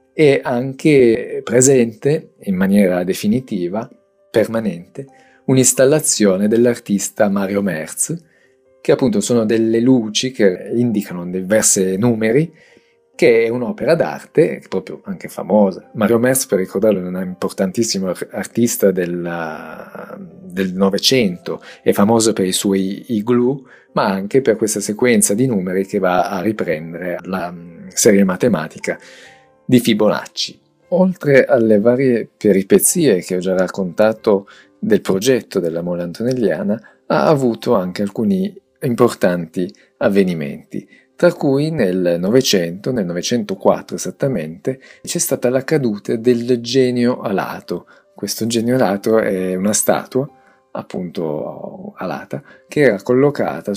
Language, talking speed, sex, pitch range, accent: Italian, 115 wpm, male, 95-130 Hz, native